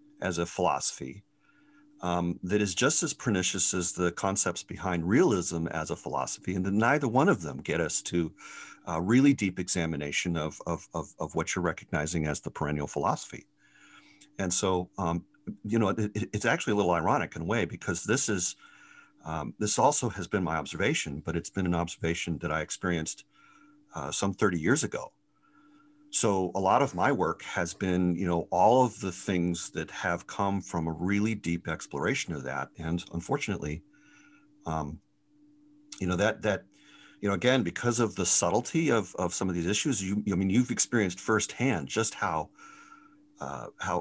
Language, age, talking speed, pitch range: English, 50-69, 175 wpm, 85-125 Hz